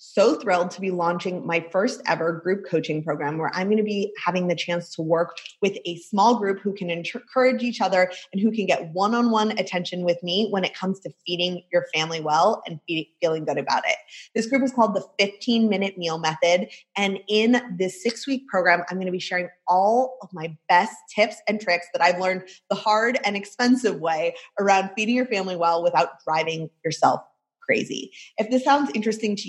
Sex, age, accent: female, 20-39, American